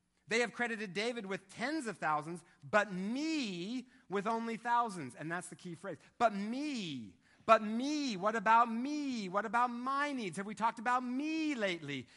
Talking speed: 175 wpm